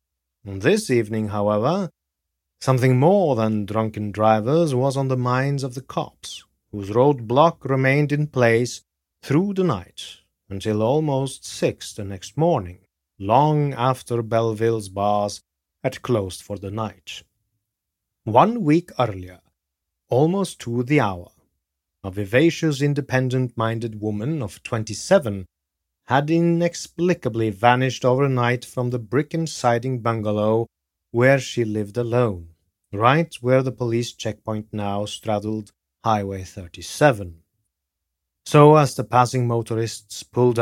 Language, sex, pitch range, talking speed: English, male, 100-130 Hz, 115 wpm